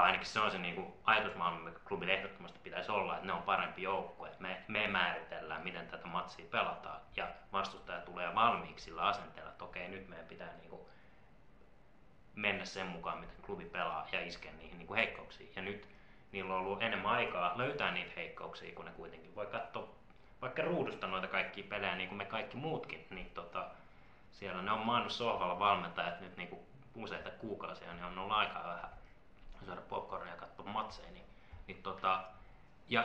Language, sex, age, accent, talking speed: Finnish, male, 20-39, native, 180 wpm